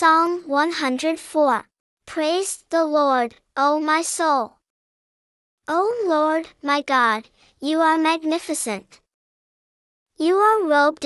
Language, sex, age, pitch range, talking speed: English, male, 10-29, 270-325 Hz, 100 wpm